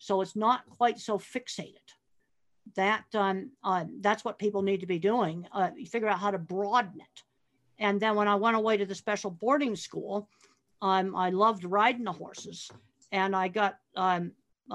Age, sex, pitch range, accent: 50-69, female, 185-220 Hz, American